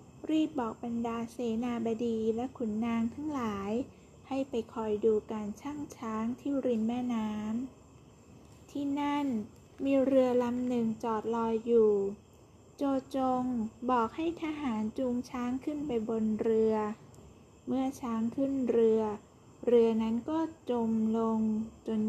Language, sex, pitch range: Thai, female, 220-265 Hz